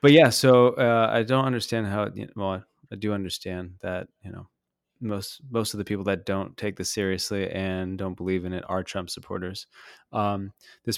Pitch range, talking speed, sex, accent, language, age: 95-115 Hz, 200 wpm, male, American, English, 20-39